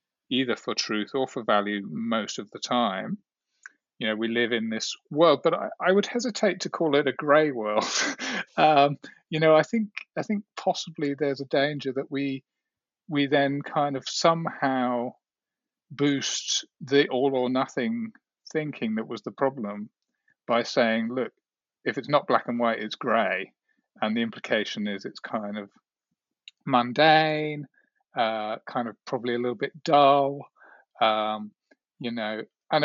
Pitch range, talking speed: 115-155 Hz, 160 wpm